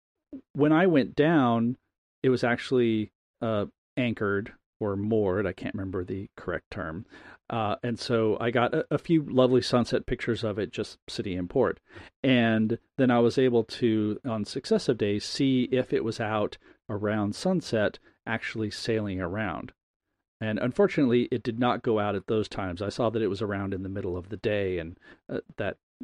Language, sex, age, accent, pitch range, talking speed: English, male, 40-59, American, 105-135 Hz, 180 wpm